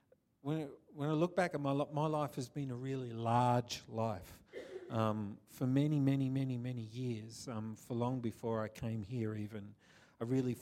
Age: 40-59